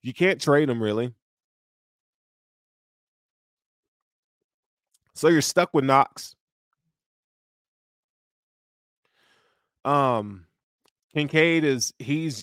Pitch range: 115-155 Hz